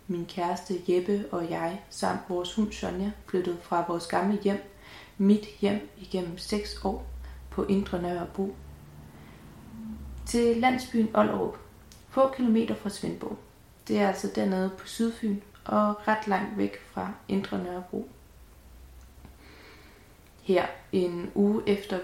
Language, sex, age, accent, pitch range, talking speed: Danish, female, 30-49, native, 180-210 Hz, 125 wpm